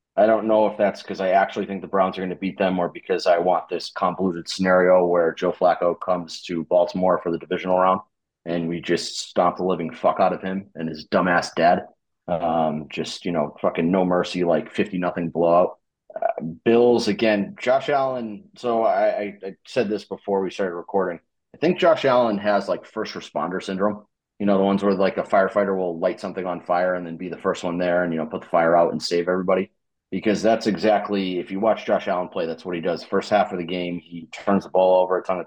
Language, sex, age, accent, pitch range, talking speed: English, male, 30-49, American, 85-100 Hz, 235 wpm